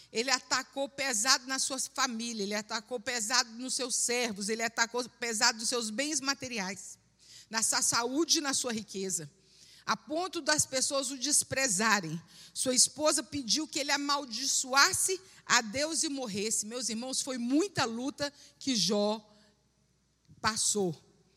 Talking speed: 140 wpm